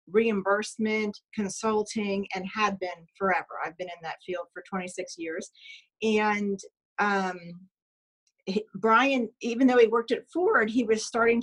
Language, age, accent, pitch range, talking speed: English, 40-59, American, 185-225 Hz, 145 wpm